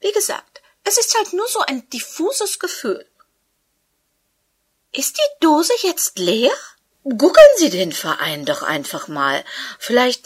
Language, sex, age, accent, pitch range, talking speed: German, female, 50-69, German, 250-360 Hz, 135 wpm